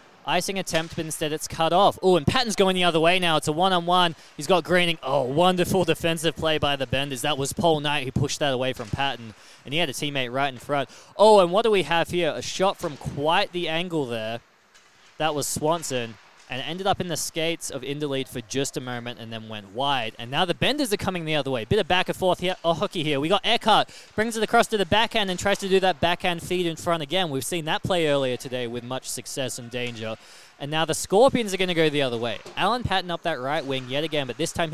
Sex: male